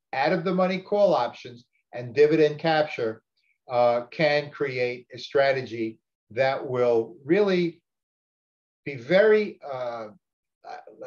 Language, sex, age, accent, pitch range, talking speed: English, male, 50-69, American, 120-165 Hz, 110 wpm